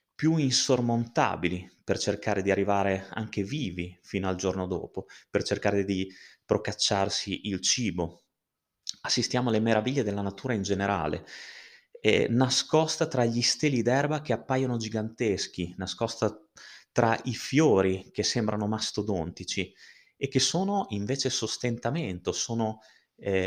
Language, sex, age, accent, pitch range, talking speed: Italian, male, 30-49, native, 95-120 Hz, 120 wpm